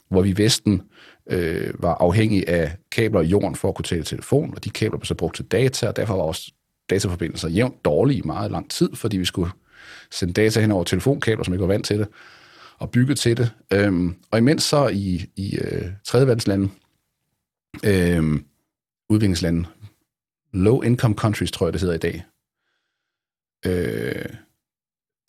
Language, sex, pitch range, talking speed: Danish, male, 90-115 Hz, 175 wpm